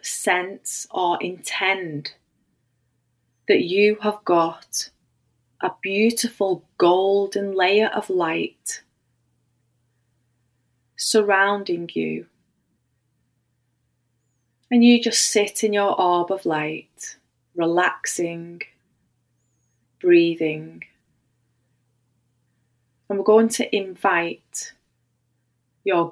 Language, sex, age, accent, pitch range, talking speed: English, female, 30-49, British, 120-185 Hz, 75 wpm